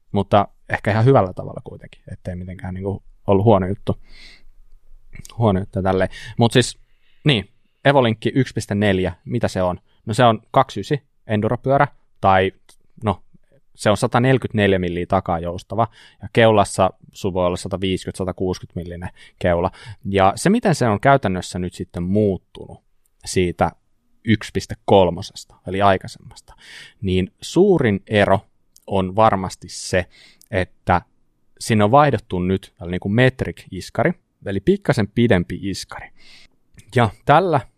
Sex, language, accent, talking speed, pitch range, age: male, Finnish, native, 120 wpm, 95-115 Hz, 20-39